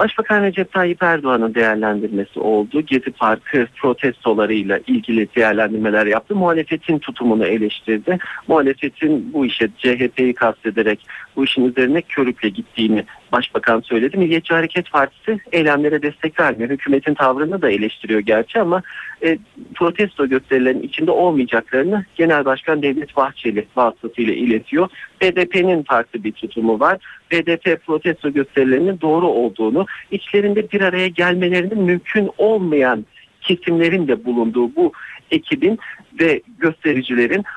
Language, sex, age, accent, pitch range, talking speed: Turkish, male, 50-69, native, 120-180 Hz, 120 wpm